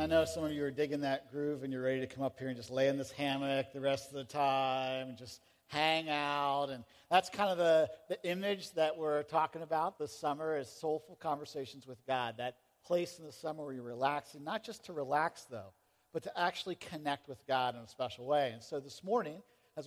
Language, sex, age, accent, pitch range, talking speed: English, male, 50-69, American, 135-170 Hz, 235 wpm